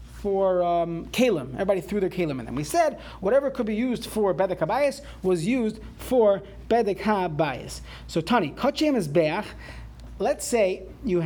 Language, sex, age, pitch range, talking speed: English, male, 30-49, 155-220 Hz, 165 wpm